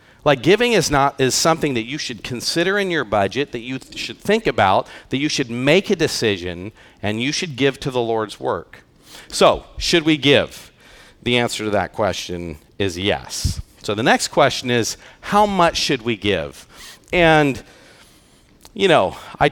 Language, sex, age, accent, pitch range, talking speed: English, male, 40-59, American, 115-155 Hz, 180 wpm